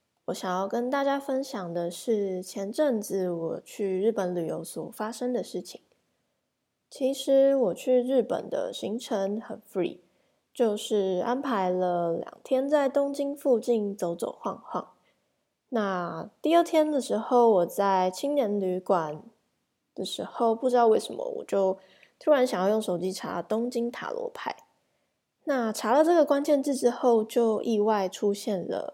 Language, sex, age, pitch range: English, female, 20-39, 185-255 Hz